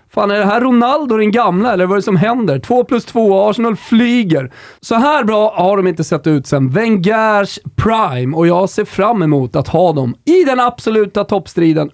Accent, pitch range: native, 155-220 Hz